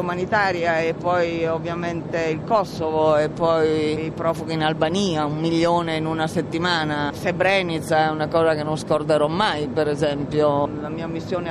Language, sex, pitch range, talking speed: Italian, female, 160-190 Hz, 150 wpm